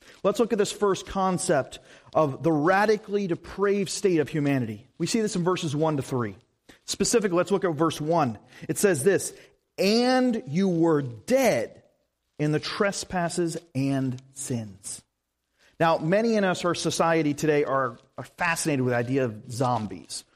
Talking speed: 160 wpm